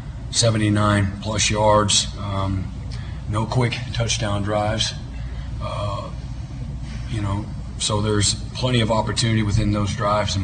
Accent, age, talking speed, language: American, 40-59, 115 wpm, English